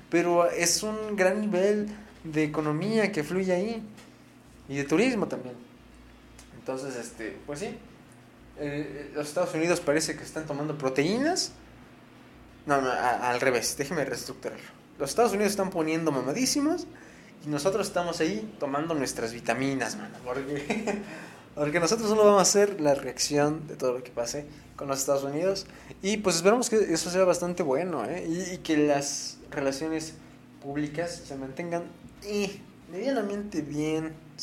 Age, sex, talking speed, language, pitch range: 20-39, male, 150 wpm, Spanish, 140-195 Hz